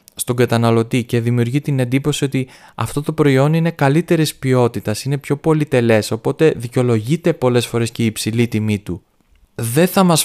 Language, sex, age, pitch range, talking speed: Greek, male, 20-39, 115-145 Hz, 165 wpm